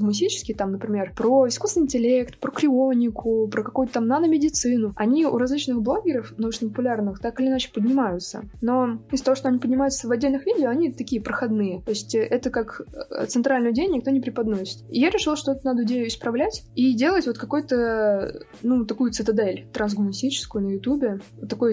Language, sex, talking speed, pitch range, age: Russian, female, 170 wpm, 215-260 Hz, 20-39